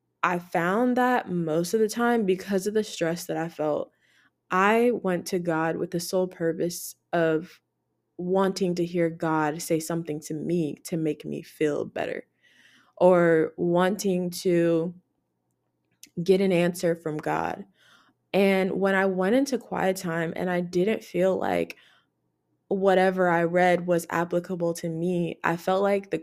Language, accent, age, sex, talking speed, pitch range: English, American, 20-39, female, 155 wpm, 170-195 Hz